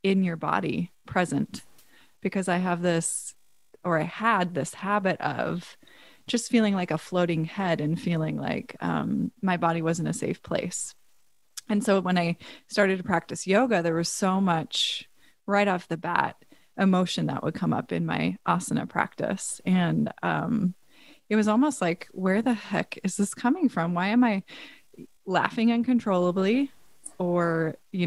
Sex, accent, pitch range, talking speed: female, American, 170-205 Hz, 160 wpm